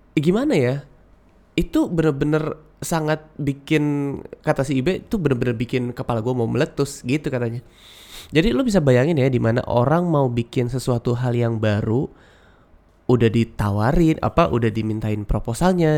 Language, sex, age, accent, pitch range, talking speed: Indonesian, male, 20-39, native, 115-155 Hz, 145 wpm